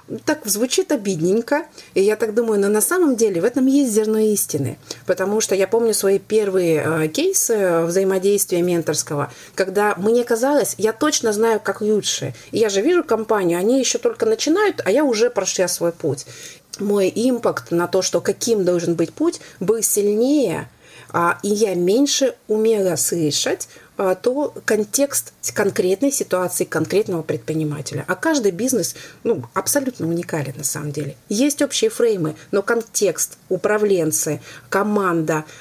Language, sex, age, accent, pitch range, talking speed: Russian, female, 30-49, native, 170-225 Hz, 145 wpm